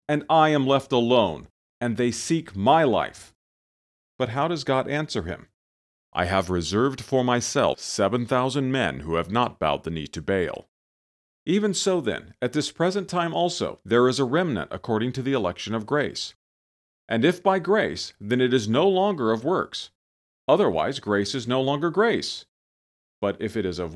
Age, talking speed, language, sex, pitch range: 40-59, 180 wpm, English, male, 105-155 Hz